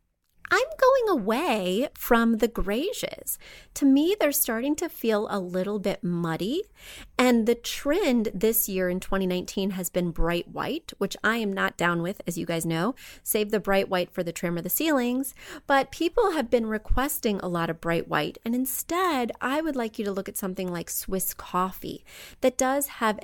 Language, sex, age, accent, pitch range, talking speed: English, female, 30-49, American, 190-265 Hz, 190 wpm